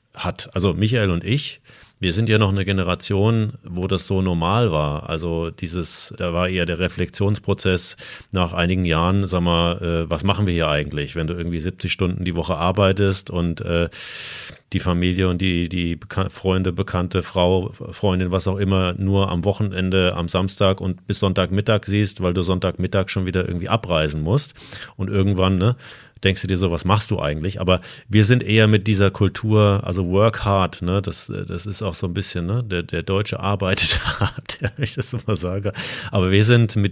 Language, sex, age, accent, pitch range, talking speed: German, male, 30-49, German, 90-100 Hz, 190 wpm